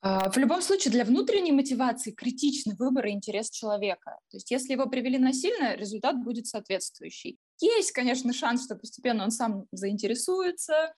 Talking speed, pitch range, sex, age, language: 155 wpm, 210-260 Hz, female, 20-39, Russian